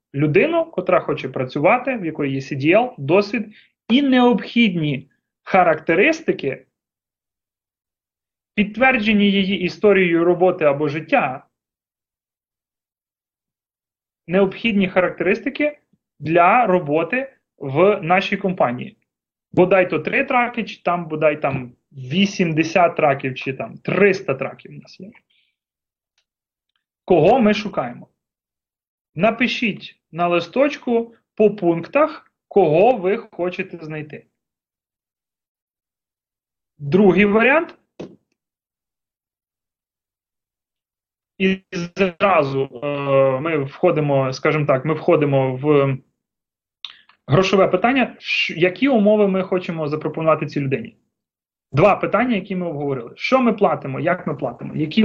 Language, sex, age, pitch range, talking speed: Ukrainian, male, 30-49, 145-210 Hz, 90 wpm